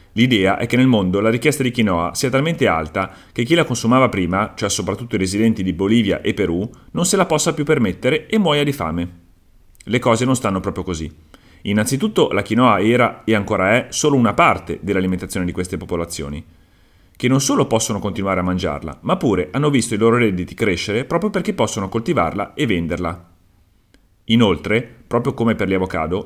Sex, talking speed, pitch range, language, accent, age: male, 185 wpm, 90-115 Hz, Italian, native, 40-59